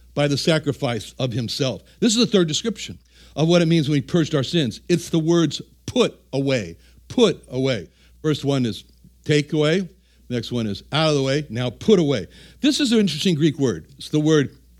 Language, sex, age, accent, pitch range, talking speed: English, male, 60-79, American, 135-185 Hz, 205 wpm